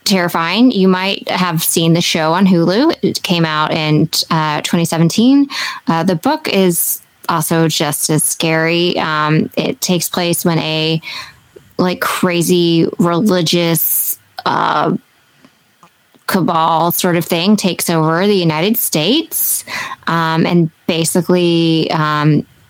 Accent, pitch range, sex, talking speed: American, 165-195 Hz, female, 120 wpm